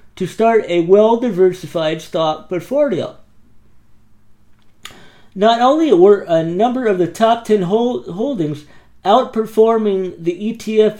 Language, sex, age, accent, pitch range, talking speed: English, male, 50-69, American, 170-230 Hz, 105 wpm